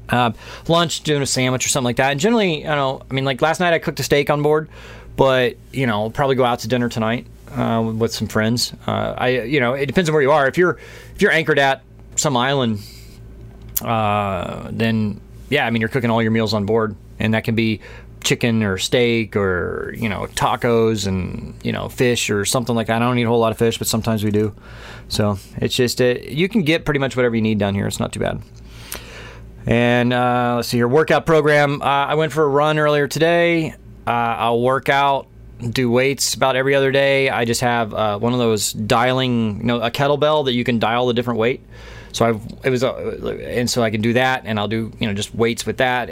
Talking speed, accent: 235 wpm, American